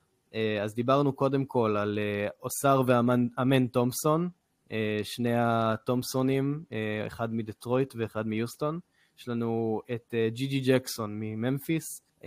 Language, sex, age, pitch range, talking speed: Hebrew, male, 20-39, 110-150 Hz, 100 wpm